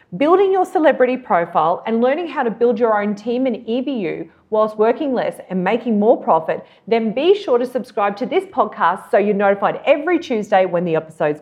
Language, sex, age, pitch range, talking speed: English, female, 40-59, 200-275 Hz, 195 wpm